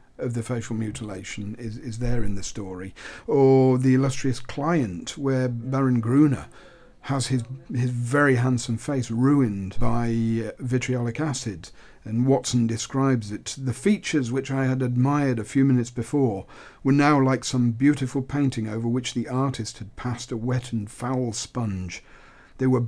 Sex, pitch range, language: male, 115-135 Hz, English